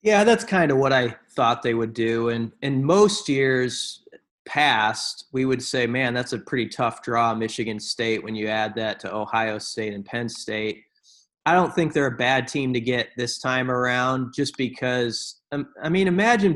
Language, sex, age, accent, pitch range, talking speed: English, male, 30-49, American, 115-140 Hz, 195 wpm